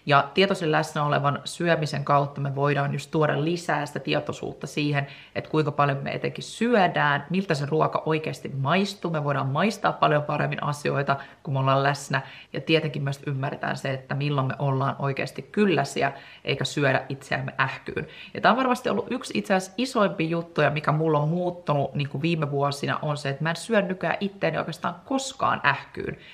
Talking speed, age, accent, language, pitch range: 175 wpm, 30-49, native, Finnish, 140-165 Hz